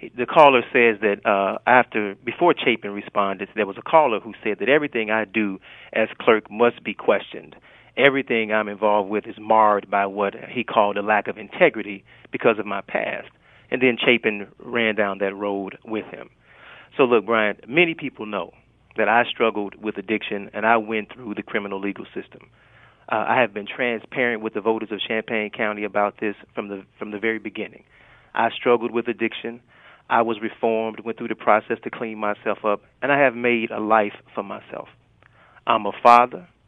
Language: English